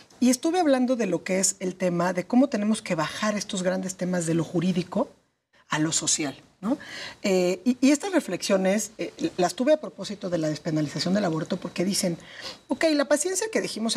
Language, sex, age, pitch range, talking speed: Spanish, female, 40-59, 170-220 Hz, 200 wpm